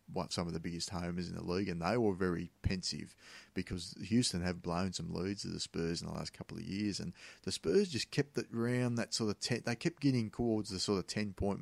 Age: 30-49